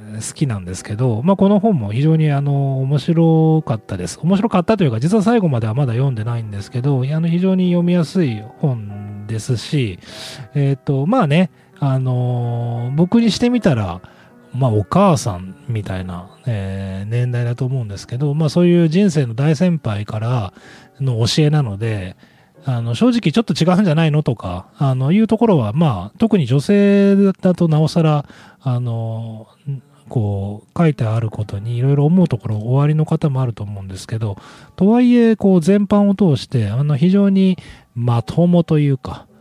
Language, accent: Japanese, native